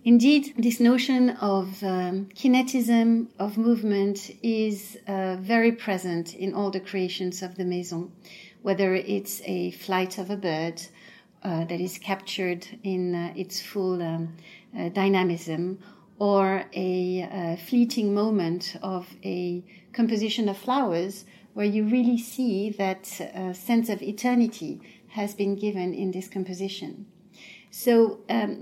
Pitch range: 185-215 Hz